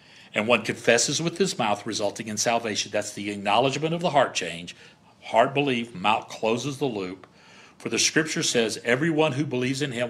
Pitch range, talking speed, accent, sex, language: 105-145 Hz, 185 wpm, American, male, English